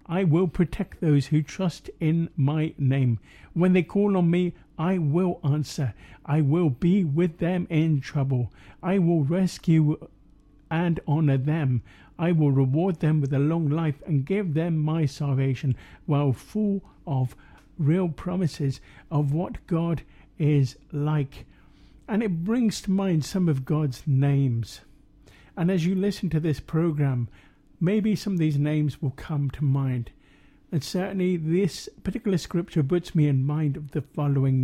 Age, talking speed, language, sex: 50-69, 155 wpm, English, male